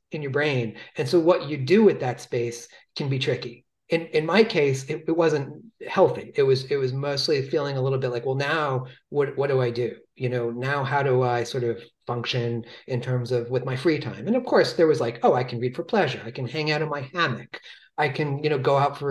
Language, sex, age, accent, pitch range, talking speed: English, male, 40-59, American, 125-155 Hz, 255 wpm